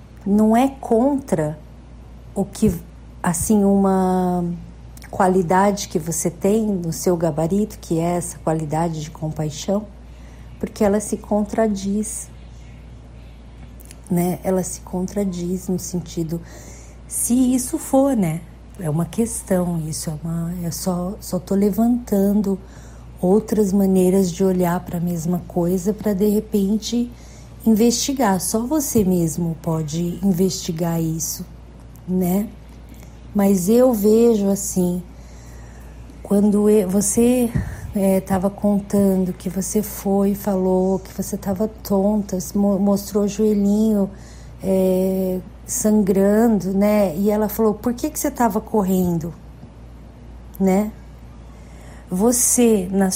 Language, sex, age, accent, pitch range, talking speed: Portuguese, female, 40-59, Brazilian, 170-210 Hz, 110 wpm